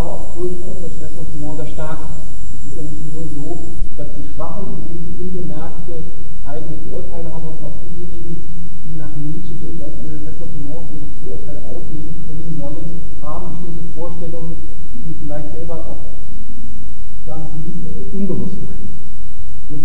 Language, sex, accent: German, male, German